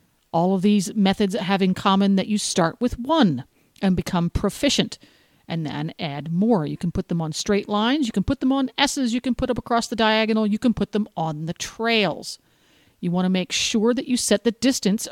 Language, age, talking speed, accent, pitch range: English, 50-69, 220 wpm, American, 170-225 Hz